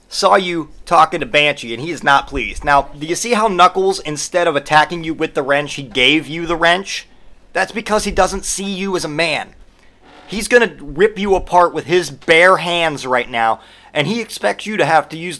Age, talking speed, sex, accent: 30-49, 220 wpm, male, American